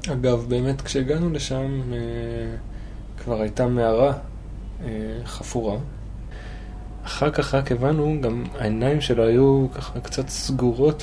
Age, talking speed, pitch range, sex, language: 20-39, 115 wpm, 110-135 Hz, male, Hebrew